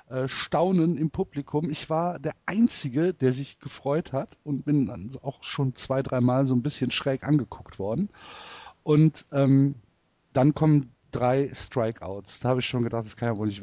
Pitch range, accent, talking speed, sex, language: 130-155 Hz, German, 175 wpm, male, German